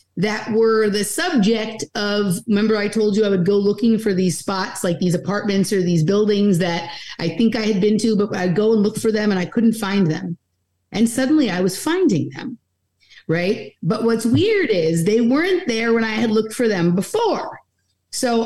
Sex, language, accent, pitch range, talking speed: female, English, American, 185-230 Hz, 205 wpm